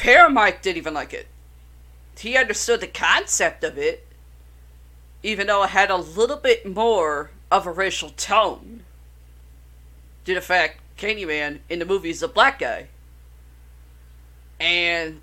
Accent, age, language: American, 40-59, English